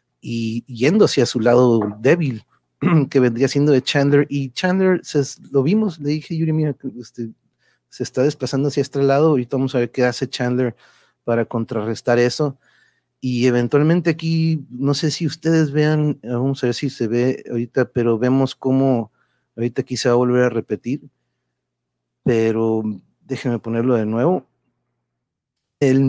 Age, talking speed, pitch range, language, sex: 30-49, 155 wpm, 120-145 Hz, Spanish, male